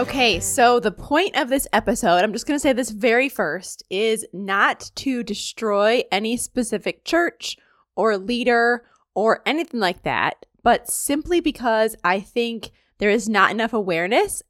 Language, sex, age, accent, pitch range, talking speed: English, female, 20-39, American, 205-255 Hz, 155 wpm